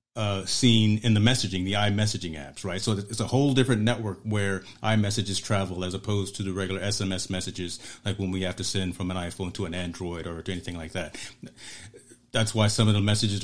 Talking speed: 215 wpm